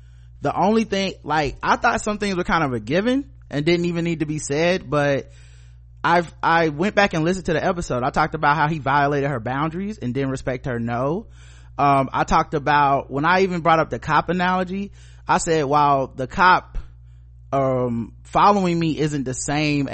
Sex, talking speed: male, 200 wpm